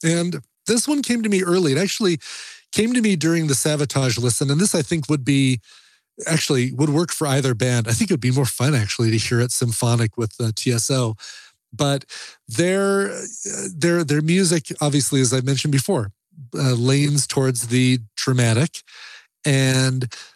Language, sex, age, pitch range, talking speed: English, male, 30-49, 120-155 Hz, 175 wpm